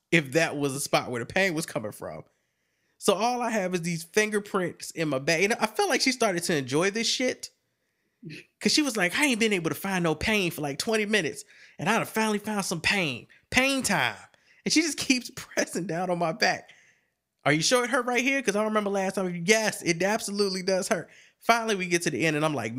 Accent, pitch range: American, 145-195 Hz